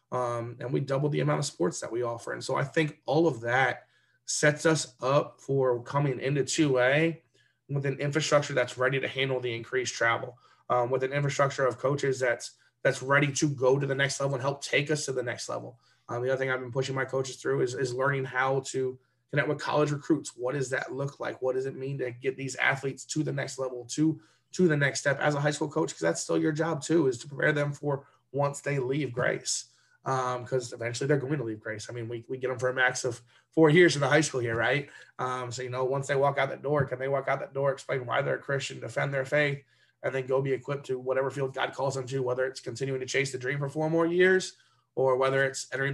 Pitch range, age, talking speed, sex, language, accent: 130-145 Hz, 20-39, 255 wpm, male, English, American